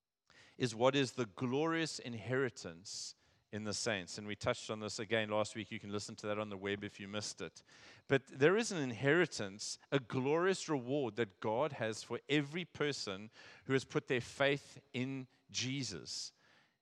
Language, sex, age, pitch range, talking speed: English, male, 40-59, 100-135 Hz, 180 wpm